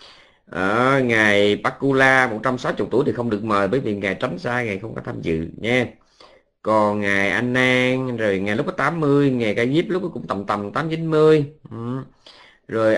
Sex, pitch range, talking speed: male, 105-130 Hz, 170 wpm